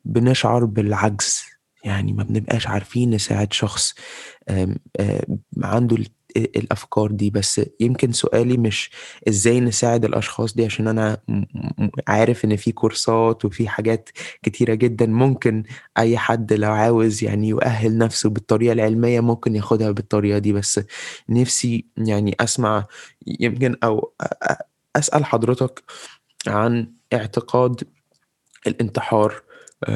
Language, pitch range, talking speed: Arabic, 105-120 Hz, 110 wpm